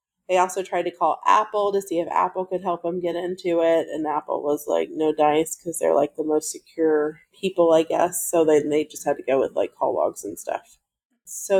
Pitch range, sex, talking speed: 165-190 Hz, female, 235 wpm